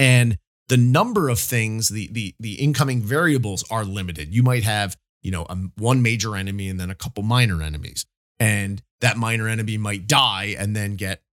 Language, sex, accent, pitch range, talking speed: English, male, American, 100-125 Hz, 190 wpm